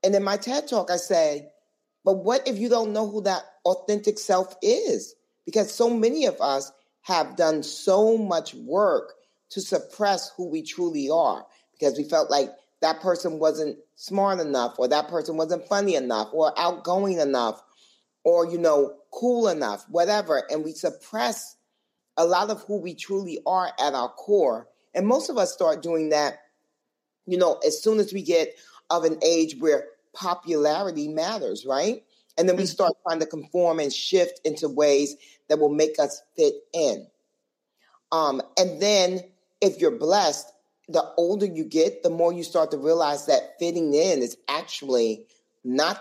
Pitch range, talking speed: 155-225 Hz, 170 wpm